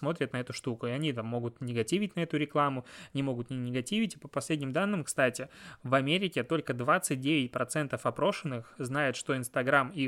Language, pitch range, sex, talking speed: Russian, 125-150 Hz, male, 185 wpm